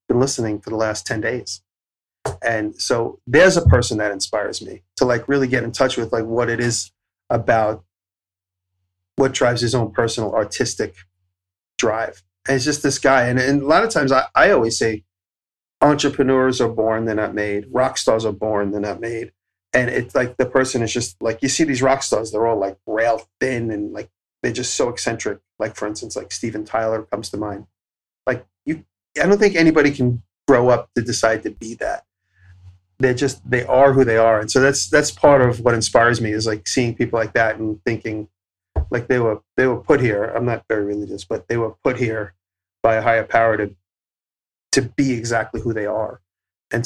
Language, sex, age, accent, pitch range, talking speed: English, male, 30-49, American, 100-125 Hz, 205 wpm